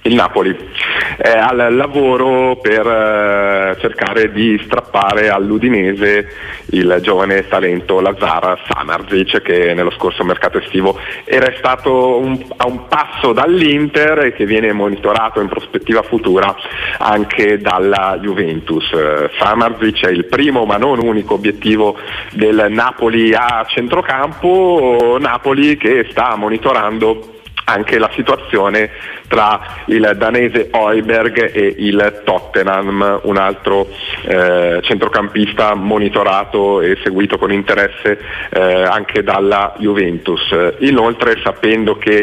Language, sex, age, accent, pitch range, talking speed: Italian, male, 30-49, native, 95-110 Hz, 110 wpm